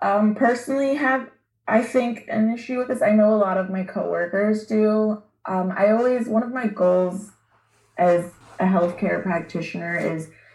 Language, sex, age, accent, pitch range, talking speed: English, female, 20-39, American, 175-210 Hz, 165 wpm